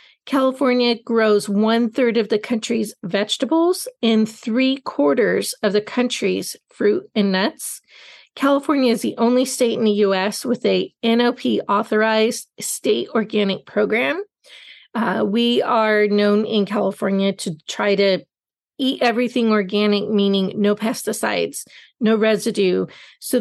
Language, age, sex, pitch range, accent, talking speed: English, 40-59, female, 200-240 Hz, American, 125 wpm